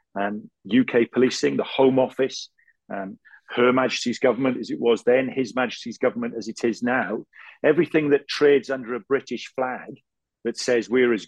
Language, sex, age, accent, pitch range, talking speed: English, male, 40-59, British, 110-130 Hz, 180 wpm